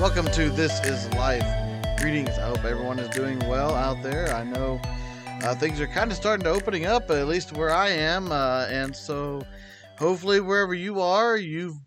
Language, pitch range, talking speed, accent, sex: English, 130-165 Hz, 190 wpm, American, male